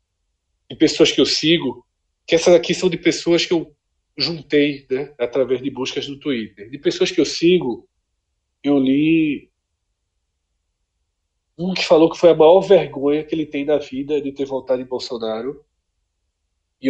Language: Portuguese